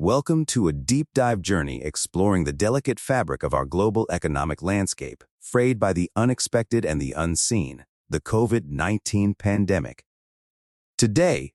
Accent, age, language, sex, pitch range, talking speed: American, 30-49, English, male, 80-120 Hz, 130 wpm